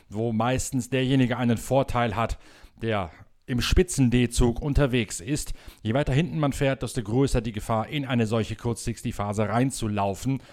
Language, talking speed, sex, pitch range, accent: German, 150 wpm, male, 110-130 Hz, German